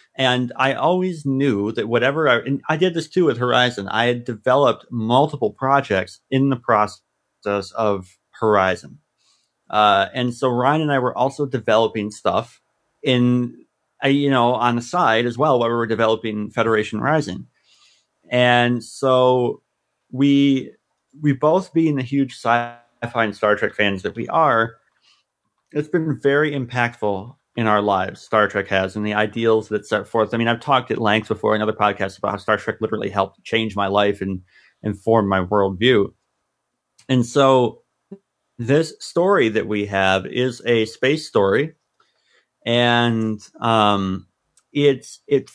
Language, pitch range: English, 105-135 Hz